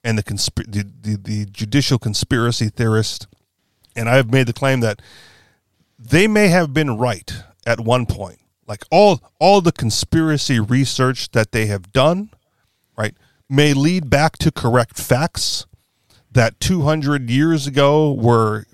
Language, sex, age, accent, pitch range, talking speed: English, male, 40-59, American, 110-145 Hz, 150 wpm